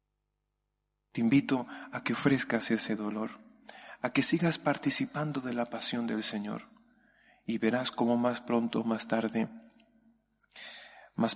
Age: 40-59